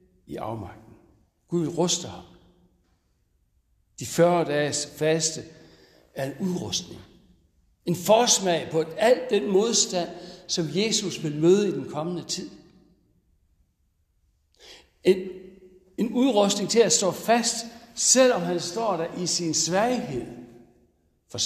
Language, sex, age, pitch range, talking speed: Danish, male, 60-79, 110-185 Hz, 115 wpm